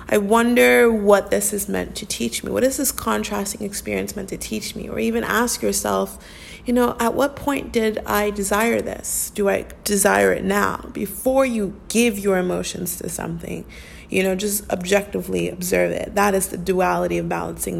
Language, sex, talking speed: English, female, 185 wpm